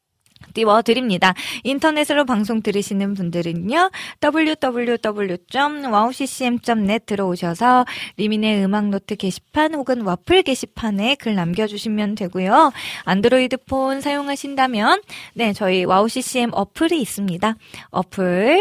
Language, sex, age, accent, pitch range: Korean, female, 20-39, native, 190-265 Hz